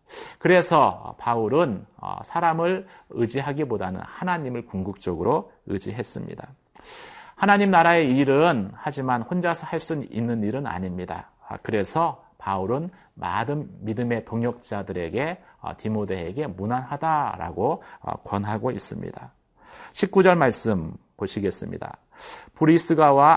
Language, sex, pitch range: Korean, male, 115-160 Hz